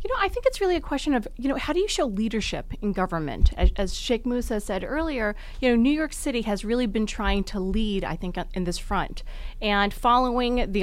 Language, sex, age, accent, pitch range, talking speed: English, female, 30-49, American, 190-240 Hz, 245 wpm